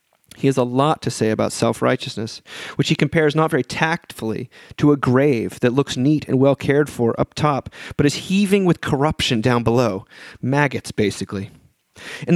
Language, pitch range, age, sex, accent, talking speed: English, 125-155 Hz, 30-49, male, American, 170 wpm